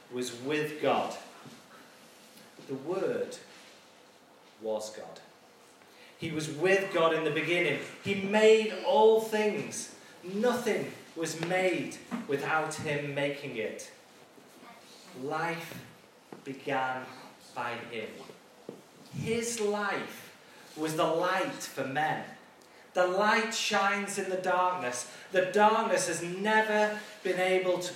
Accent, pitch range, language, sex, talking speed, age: British, 155-205 Hz, English, male, 105 wpm, 30-49